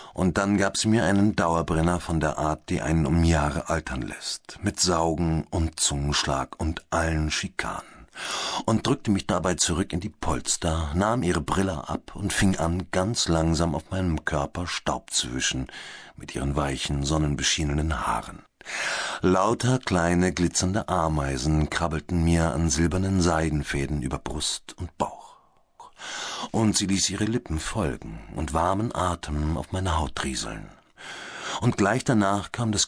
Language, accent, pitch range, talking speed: German, German, 80-100 Hz, 150 wpm